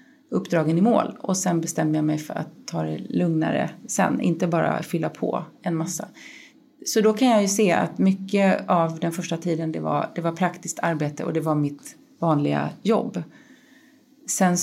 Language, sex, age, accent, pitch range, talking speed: English, female, 30-49, Swedish, 160-220 Hz, 180 wpm